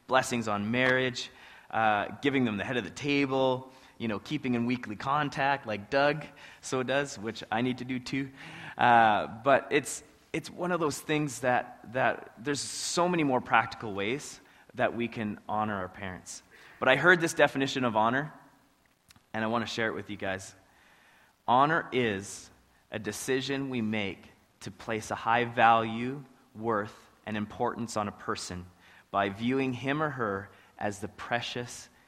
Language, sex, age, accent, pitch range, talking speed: English, male, 20-39, American, 100-130 Hz, 170 wpm